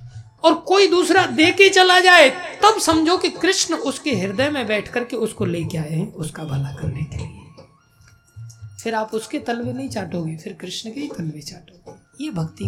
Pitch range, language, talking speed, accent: 135-215 Hz, Hindi, 185 wpm, native